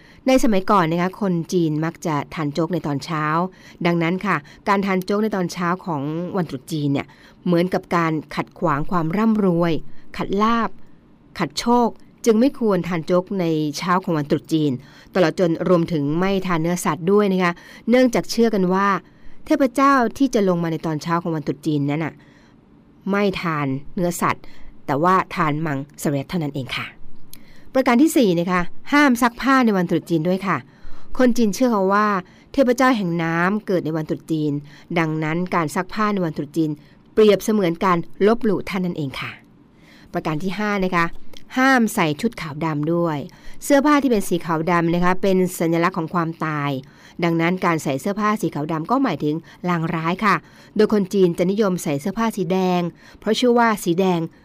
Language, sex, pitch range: Thai, female, 160-205 Hz